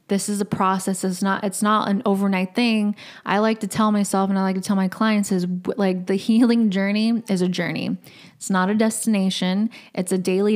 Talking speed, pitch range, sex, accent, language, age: 215 wpm, 190-220 Hz, female, American, English, 20-39